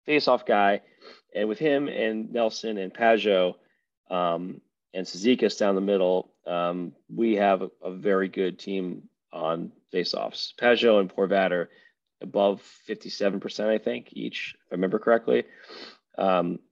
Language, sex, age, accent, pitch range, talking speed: English, male, 30-49, American, 100-130 Hz, 140 wpm